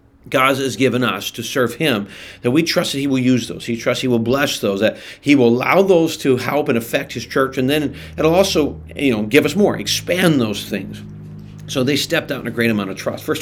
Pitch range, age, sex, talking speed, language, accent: 110-135 Hz, 40-59, male, 245 wpm, English, American